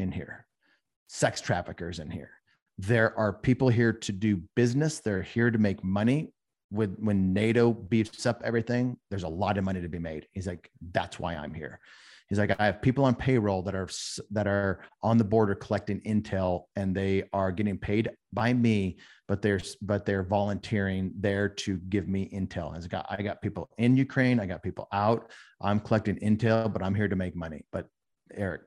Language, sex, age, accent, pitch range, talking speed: English, male, 40-59, American, 95-115 Hz, 195 wpm